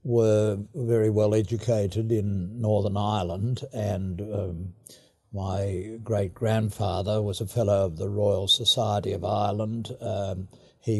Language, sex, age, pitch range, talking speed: English, male, 60-79, 100-115 Hz, 120 wpm